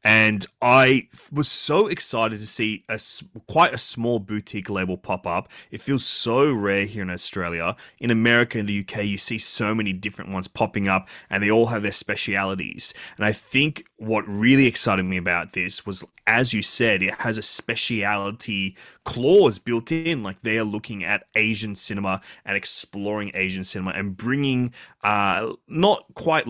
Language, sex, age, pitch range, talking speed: English, male, 20-39, 105-140 Hz, 170 wpm